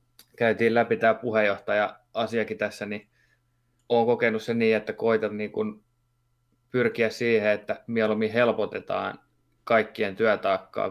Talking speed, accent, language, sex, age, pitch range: 110 wpm, native, Finnish, male, 20-39, 105-120 Hz